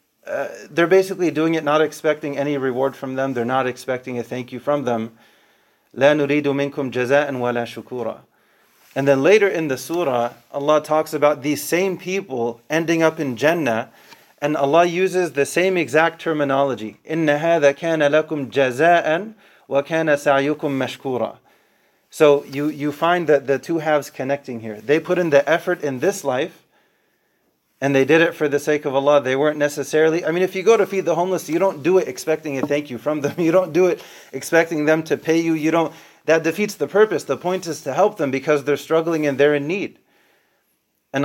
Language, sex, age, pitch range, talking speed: English, male, 30-49, 135-165 Hz, 185 wpm